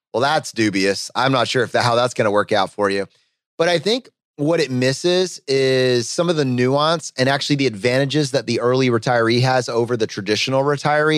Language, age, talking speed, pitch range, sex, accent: English, 30-49, 215 wpm, 120-150 Hz, male, American